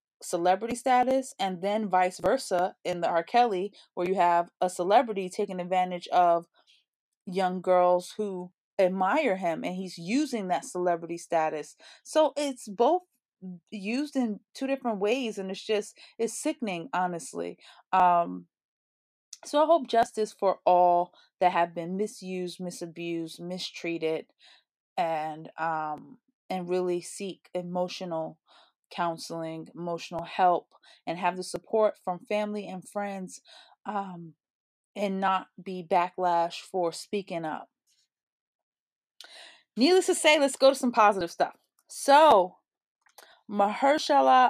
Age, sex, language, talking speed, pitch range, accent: 20-39, female, English, 125 wpm, 175-235 Hz, American